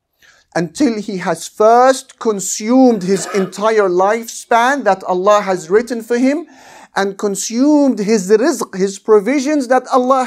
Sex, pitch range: male, 195-245 Hz